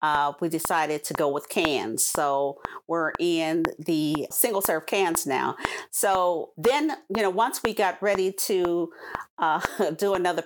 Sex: female